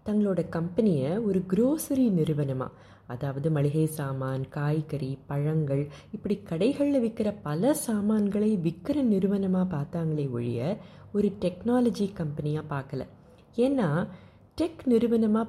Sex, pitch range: female, 145-205 Hz